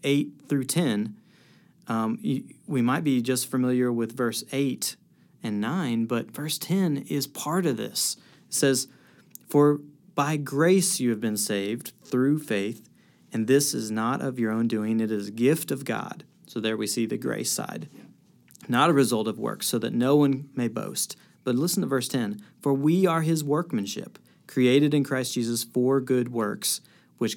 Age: 40-59